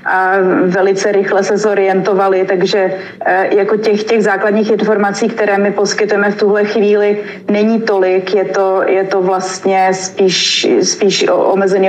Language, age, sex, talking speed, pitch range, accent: Czech, 30-49, female, 135 wpm, 195-210 Hz, native